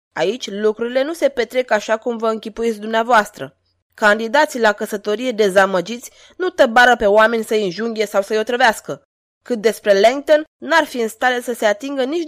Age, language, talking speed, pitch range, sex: 20-39, Romanian, 165 wpm, 200-270 Hz, female